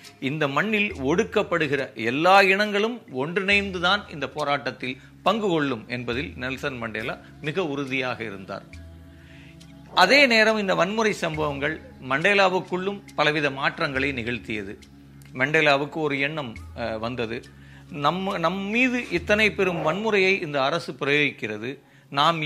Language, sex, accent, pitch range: Tamil, male, native, 110-165 Hz